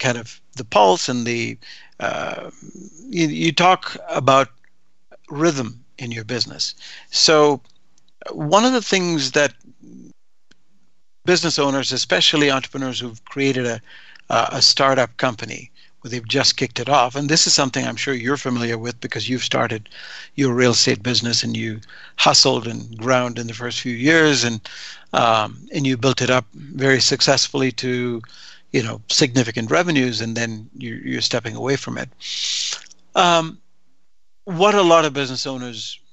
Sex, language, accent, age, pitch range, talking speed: male, English, American, 60-79, 120-145 Hz, 155 wpm